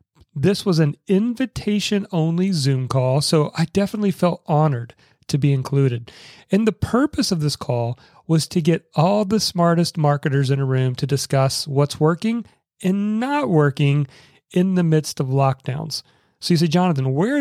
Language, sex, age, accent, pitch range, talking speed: English, male, 40-59, American, 140-185 Hz, 160 wpm